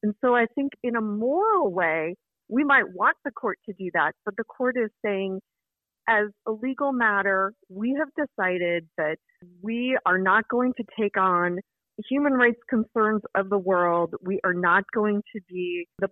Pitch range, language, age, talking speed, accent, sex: 190-235 Hz, English, 30-49, 185 wpm, American, female